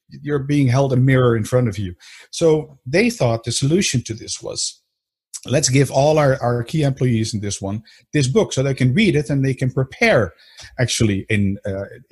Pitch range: 115-150 Hz